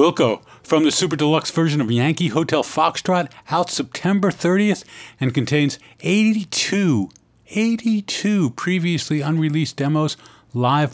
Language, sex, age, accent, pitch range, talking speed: English, male, 50-69, American, 115-160 Hz, 115 wpm